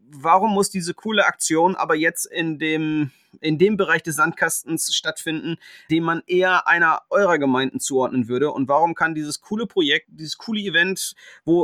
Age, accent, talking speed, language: 30-49, German, 165 wpm, German